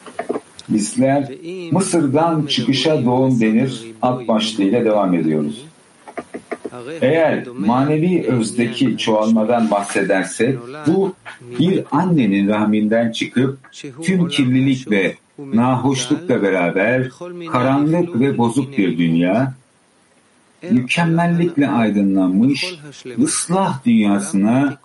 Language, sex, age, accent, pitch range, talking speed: English, male, 60-79, Turkish, 110-145 Hz, 80 wpm